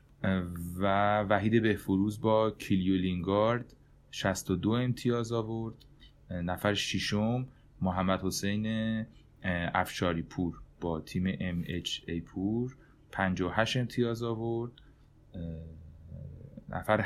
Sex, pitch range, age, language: male, 95-125 Hz, 30-49, Persian